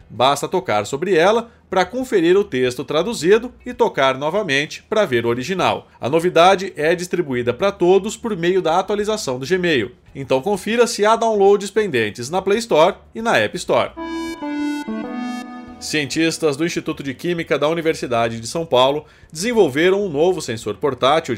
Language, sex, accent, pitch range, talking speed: Portuguese, male, Brazilian, 145-205 Hz, 155 wpm